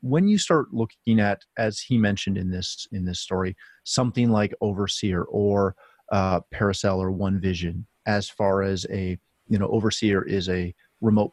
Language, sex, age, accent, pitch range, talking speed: English, male, 30-49, American, 95-115 Hz, 170 wpm